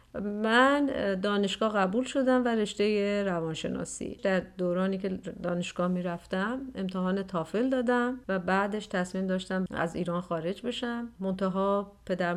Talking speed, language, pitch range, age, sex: 120 wpm, Persian, 185-240 Hz, 40-59, female